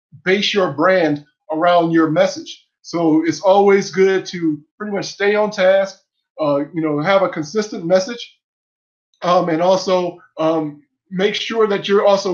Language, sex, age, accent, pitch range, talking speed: English, male, 20-39, American, 165-200 Hz, 155 wpm